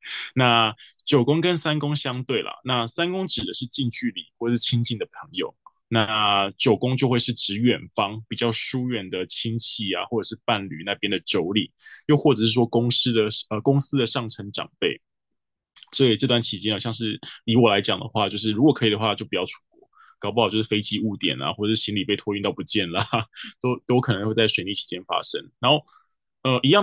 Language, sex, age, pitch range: Chinese, male, 20-39, 105-125 Hz